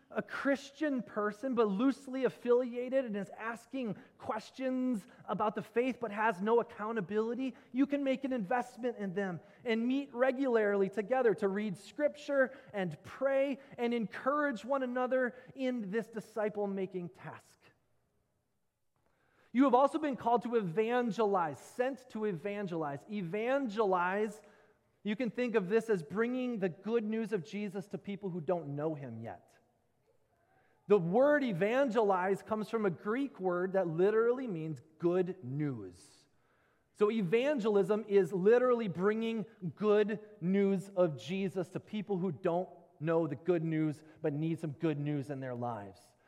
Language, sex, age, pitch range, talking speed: English, male, 30-49, 175-240 Hz, 140 wpm